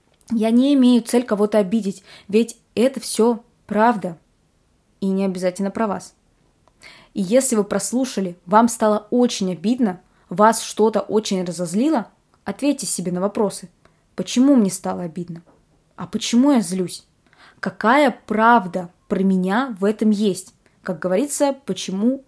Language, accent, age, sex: Russian, native, 20-39, female